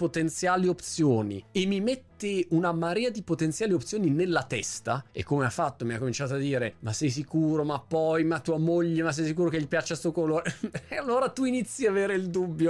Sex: male